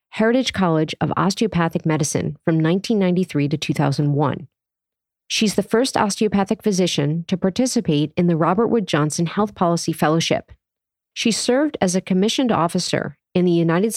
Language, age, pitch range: English, 40-59, 160-215 Hz